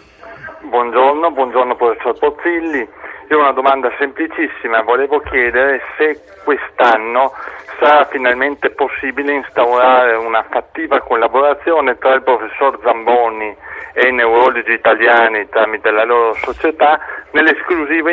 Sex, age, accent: male, 50-69, native